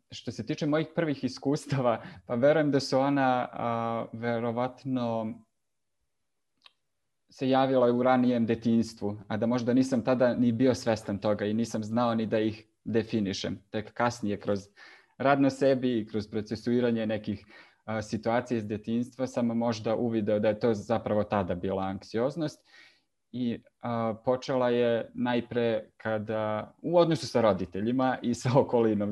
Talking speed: 145 wpm